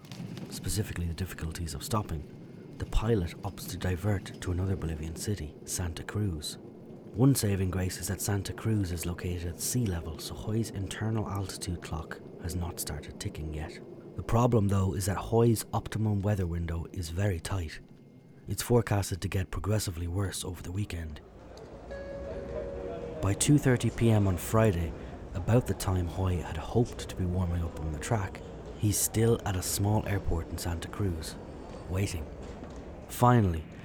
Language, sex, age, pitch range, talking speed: English, male, 30-49, 85-105 Hz, 155 wpm